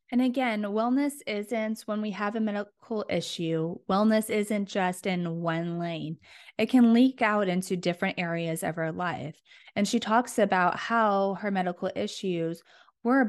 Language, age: English, 20-39